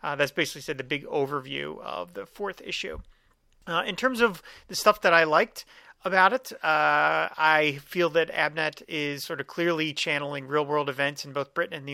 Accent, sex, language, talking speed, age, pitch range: American, male, English, 195 wpm, 30-49, 145-180 Hz